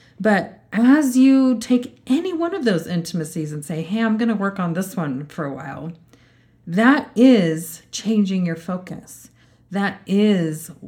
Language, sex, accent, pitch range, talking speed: English, female, American, 160-215 Hz, 160 wpm